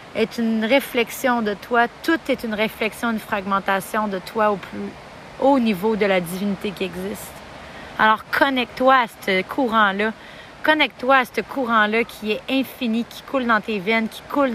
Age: 30-49